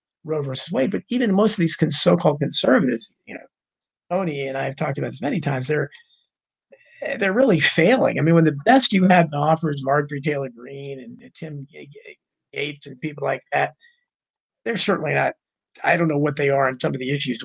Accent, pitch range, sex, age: American, 145-190 Hz, male, 50-69